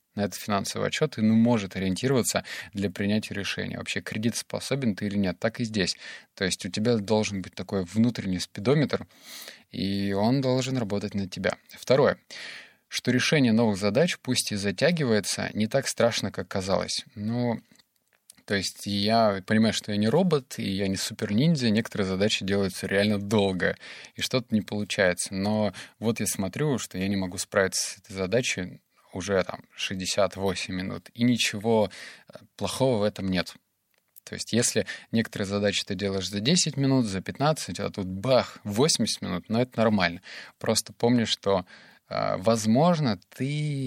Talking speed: 160 wpm